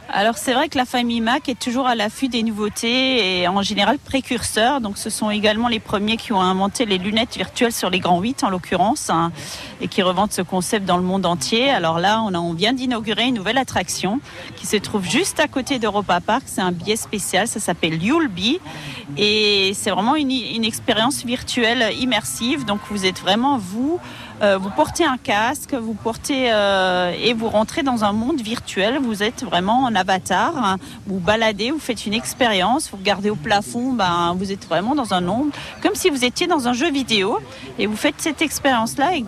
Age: 40-59